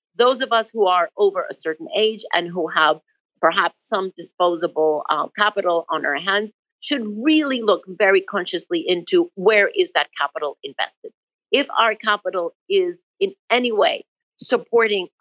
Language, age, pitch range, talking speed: English, 50-69, 170-245 Hz, 155 wpm